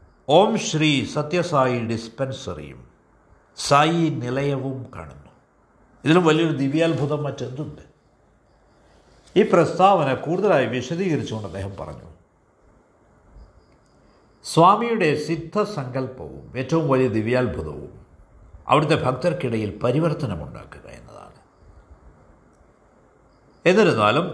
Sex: male